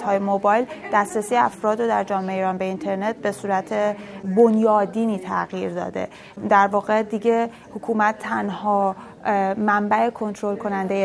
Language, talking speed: Persian, 125 wpm